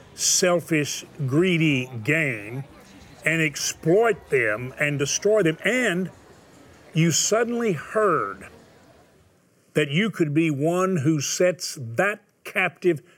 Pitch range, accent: 145-180 Hz, American